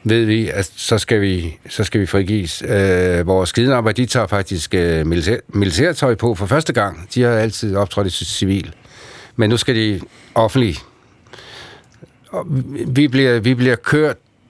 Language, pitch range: Danish, 95-125 Hz